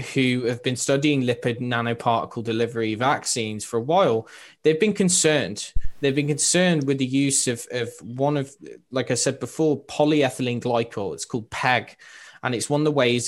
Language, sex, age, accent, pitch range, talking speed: English, male, 20-39, British, 120-150 Hz, 175 wpm